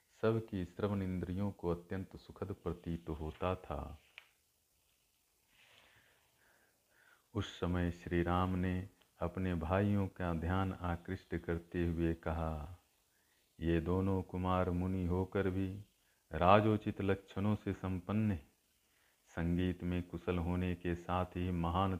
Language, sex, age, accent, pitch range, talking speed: Hindi, male, 40-59, native, 85-95 Hz, 110 wpm